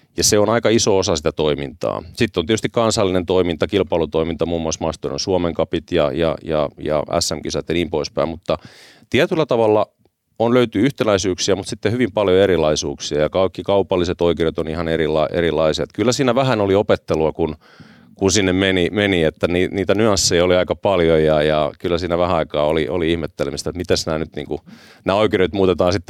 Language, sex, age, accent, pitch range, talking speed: Finnish, male, 30-49, native, 85-105 Hz, 180 wpm